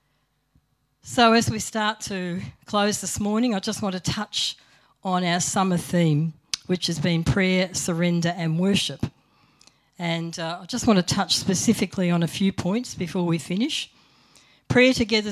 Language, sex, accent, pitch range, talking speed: English, female, Australian, 155-200 Hz, 160 wpm